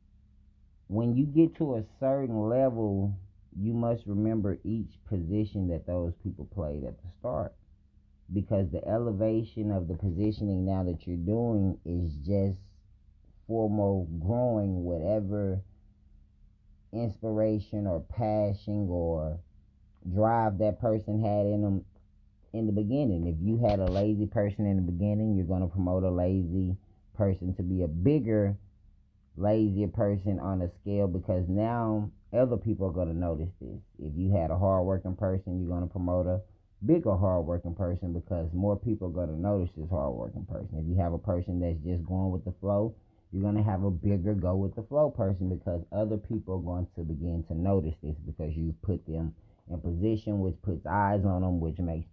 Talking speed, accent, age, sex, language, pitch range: 175 wpm, American, 30-49, male, English, 90-105 Hz